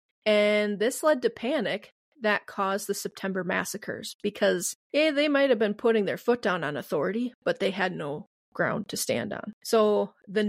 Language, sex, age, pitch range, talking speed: English, female, 30-49, 195-225 Hz, 175 wpm